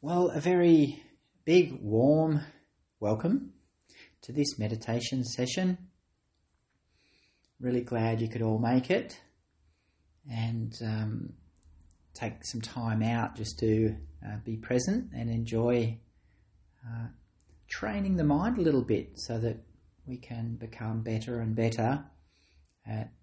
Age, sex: 30-49, male